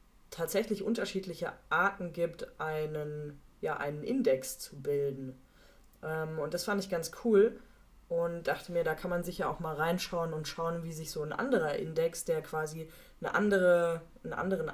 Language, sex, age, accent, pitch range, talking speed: German, female, 20-39, German, 160-190 Hz, 165 wpm